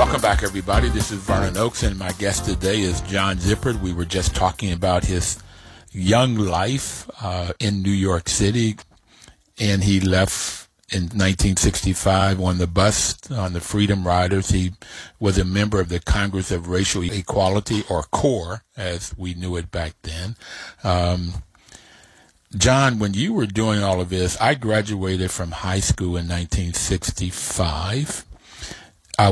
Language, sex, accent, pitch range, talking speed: English, male, American, 90-105 Hz, 150 wpm